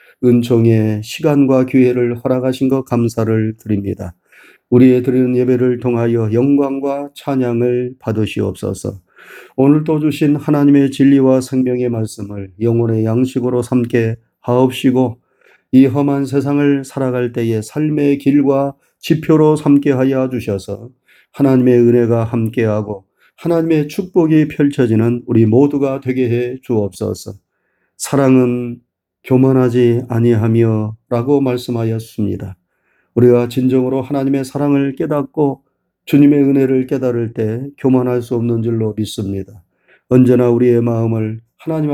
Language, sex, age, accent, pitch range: Korean, male, 30-49, native, 115-140 Hz